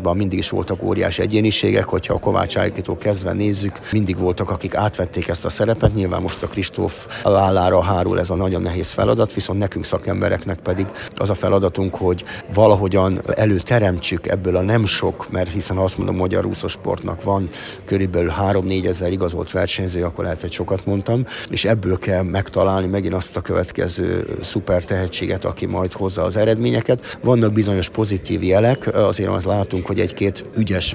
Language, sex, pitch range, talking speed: Hungarian, male, 95-105 Hz, 165 wpm